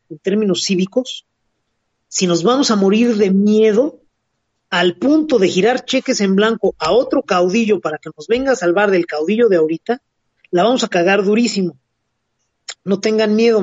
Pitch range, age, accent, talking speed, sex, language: 160-230 Hz, 40-59, Mexican, 165 wpm, male, Spanish